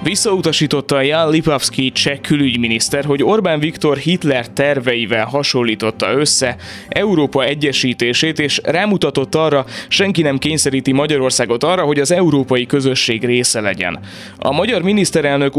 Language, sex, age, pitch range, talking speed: Hungarian, male, 20-39, 125-155 Hz, 120 wpm